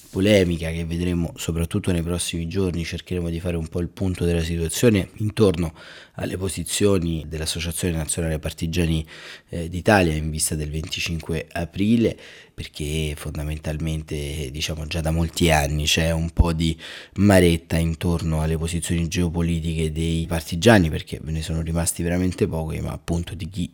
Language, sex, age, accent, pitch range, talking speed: Italian, male, 30-49, native, 80-95 Hz, 145 wpm